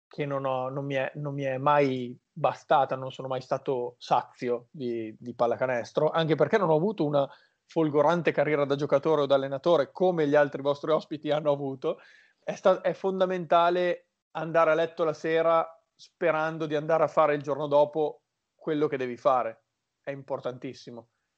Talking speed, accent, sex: 160 wpm, native, male